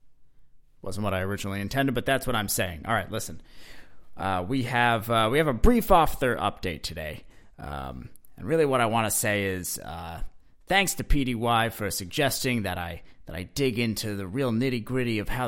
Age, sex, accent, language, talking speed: 30-49, male, American, English, 195 wpm